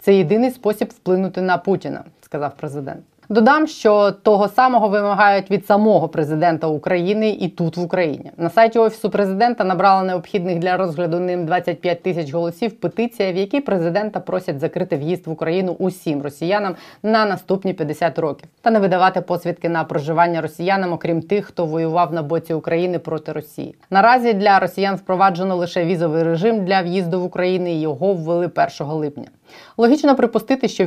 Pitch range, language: 165-195 Hz, Ukrainian